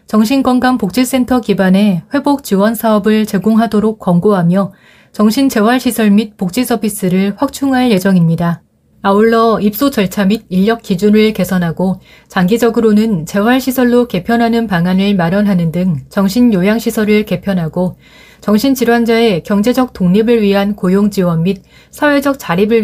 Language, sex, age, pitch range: Korean, female, 30-49, 190-235 Hz